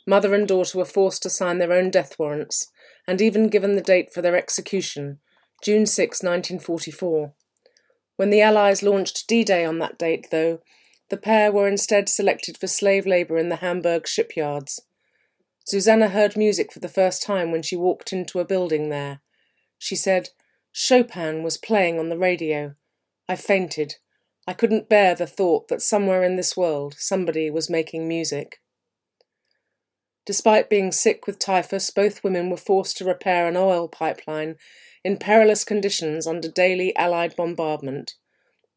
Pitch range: 165-200 Hz